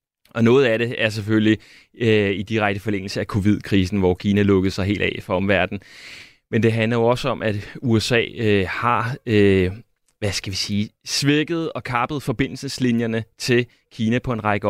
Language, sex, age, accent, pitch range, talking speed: Danish, male, 30-49, native, 105-130 Hz, 180 wpm